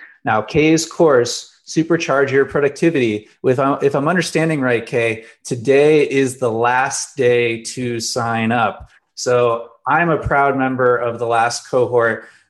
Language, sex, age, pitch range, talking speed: English, male, 20-39, 115-140 Hz, 135 wpm